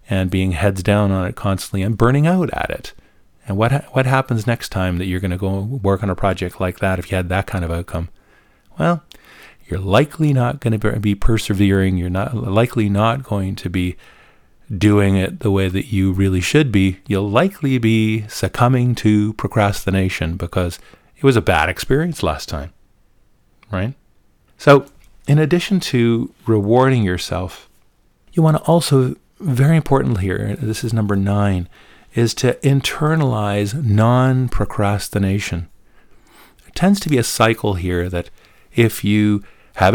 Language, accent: English, American